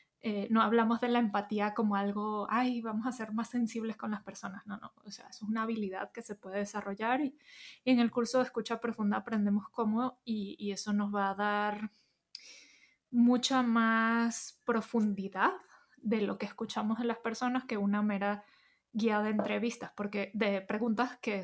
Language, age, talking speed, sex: Spanish, 20-39, 180 wpm, female